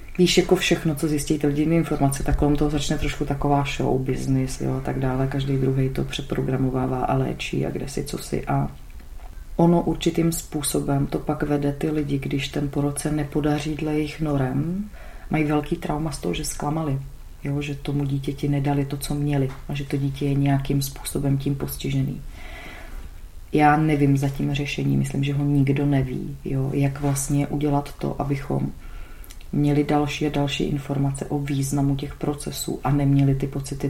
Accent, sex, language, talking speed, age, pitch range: native, female, Czech, 175 wpm, 30-49, 135-150 Hz